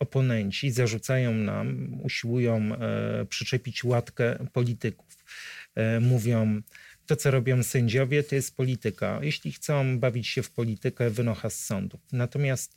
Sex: male